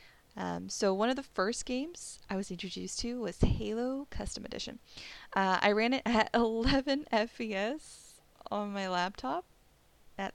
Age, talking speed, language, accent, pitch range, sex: 20-39, 150 wpm, English, American, 200-260 Hz, female